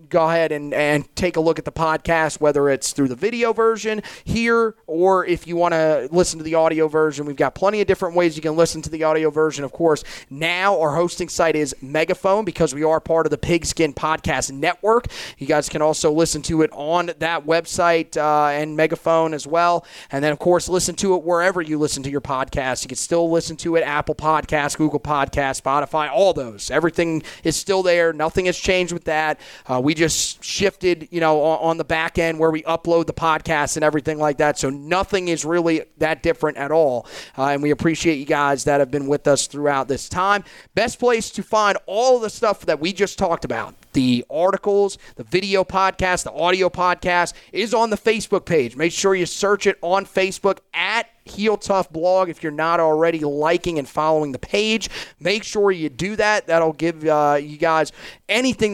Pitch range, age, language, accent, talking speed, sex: 150-180 Hz, 30-49, English, American, 210 wpm, male